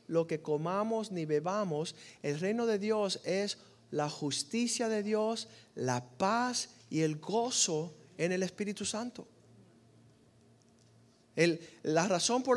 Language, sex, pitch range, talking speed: Spanish, male, 165-225 Hz, 130 wpm